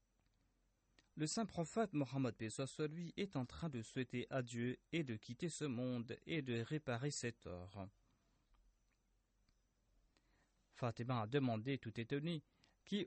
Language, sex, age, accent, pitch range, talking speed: French, male, 40-59, French, 115-140 Hz, 125 wpm